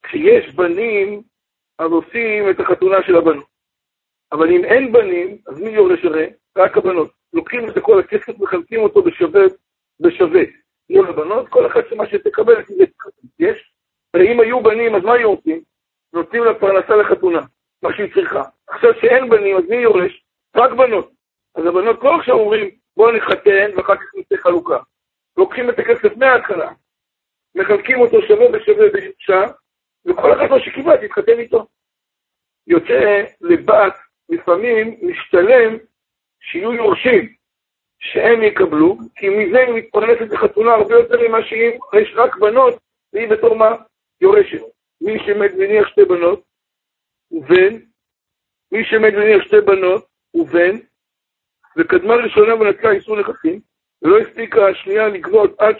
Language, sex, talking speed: Hebrew, male, 140 wpm